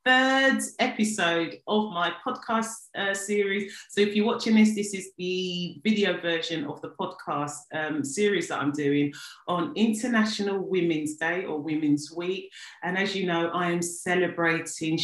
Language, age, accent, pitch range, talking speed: English, 30-49, British, 165-215 Hz, 155 wpm